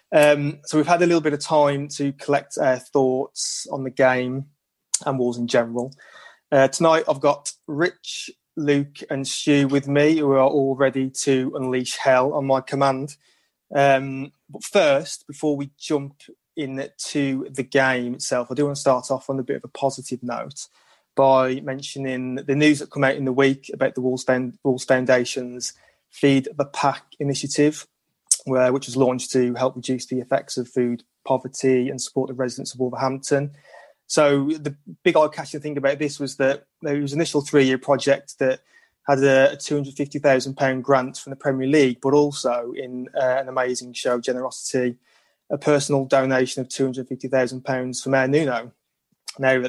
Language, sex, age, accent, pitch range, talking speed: English, male, 20-39, British, 130-145 Hz, 170 wpm